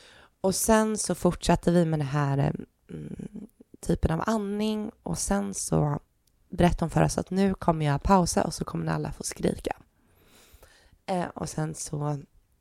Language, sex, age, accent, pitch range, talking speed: Swedish, female, 20-39, native, 155-200 Hz, 155 wpm